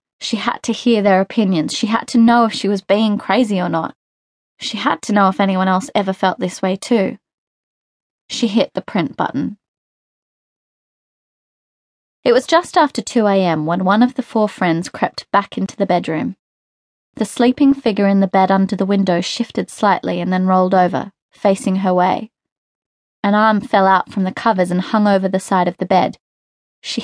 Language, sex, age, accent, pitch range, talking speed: English, female, 20-39, Australian, 185-230 Hz, 185 wpm